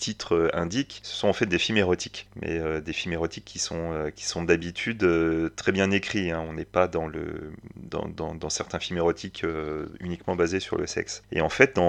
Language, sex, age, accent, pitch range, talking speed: French, male, 30-49, French, 85-110 Hz, 225 wpm